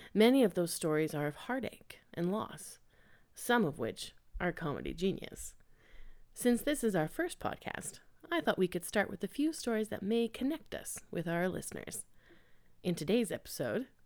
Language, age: English, 30-49